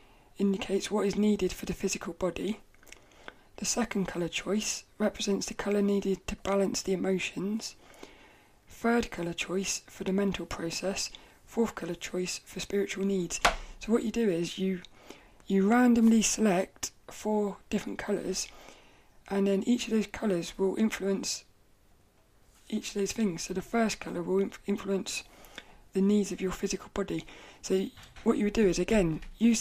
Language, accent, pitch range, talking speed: English, British, 185-210 Hz, 160 wpm